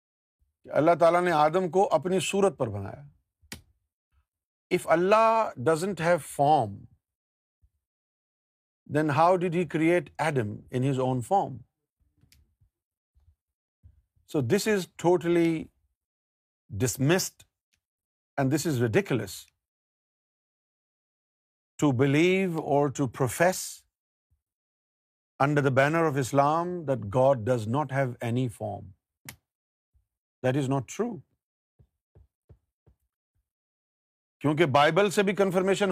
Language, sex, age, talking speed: Urdu, male, 50-69, 100 wpm